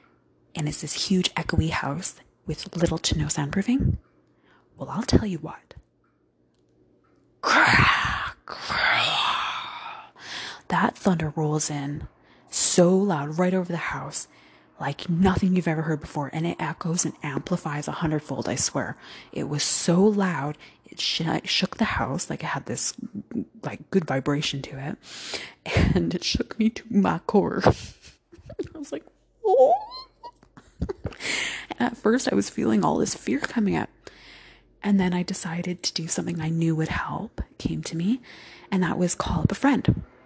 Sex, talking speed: female, 150 wpm